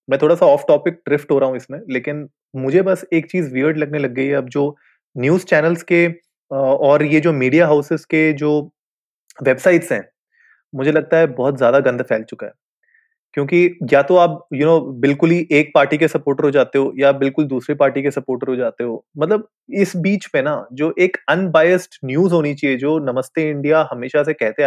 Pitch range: 140-180 Hz